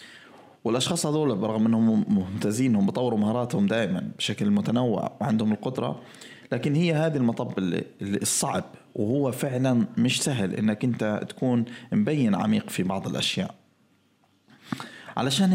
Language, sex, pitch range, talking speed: Arabic, male, 105-150 Hz, 125 wpm